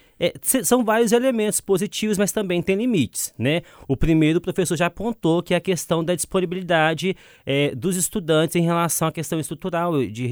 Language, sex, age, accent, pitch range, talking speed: Portuguese, male, 20-39, Brazilian, 140-190 Hz, 180 wpm